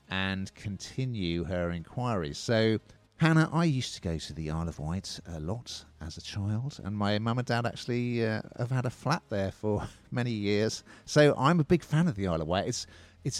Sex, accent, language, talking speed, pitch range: male, British, English, 210 wpm, 85-120 Hz